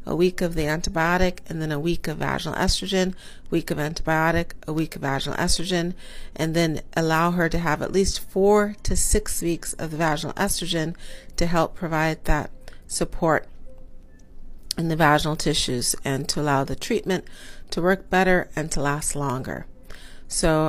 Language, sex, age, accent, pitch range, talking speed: English, female, 40-59, American, 155-190 Hz, 170 wpm